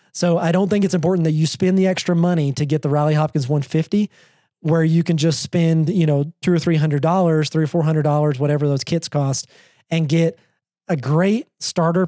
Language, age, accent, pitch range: English, 30-49, American, 145-175 Hz